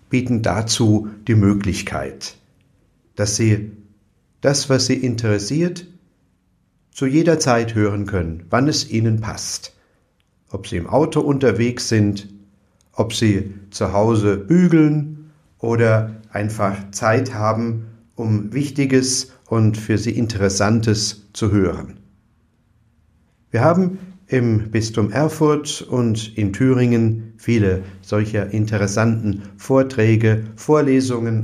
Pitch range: 105-130 Hz